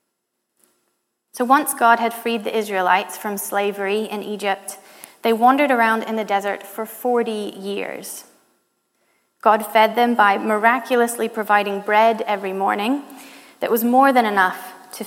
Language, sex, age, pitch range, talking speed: English, female, 30-49, 200-230 Hz, 140 wpm